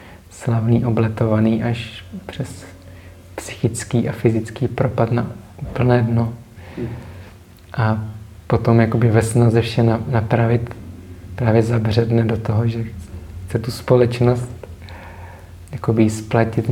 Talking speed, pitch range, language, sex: 95 wpm, 105-120 Hz, Czech, male